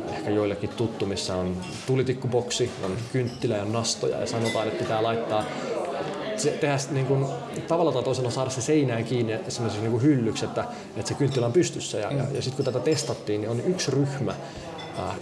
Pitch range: 110-135 Hz